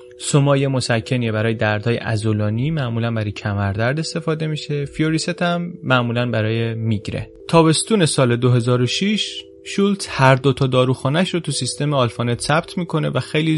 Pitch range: 115-150 Hz